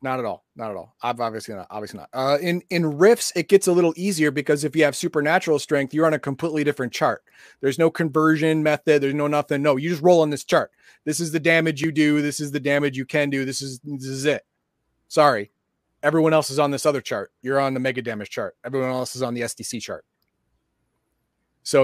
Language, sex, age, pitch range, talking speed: English, male, 30-49, 140-170 Hz, 235 wpm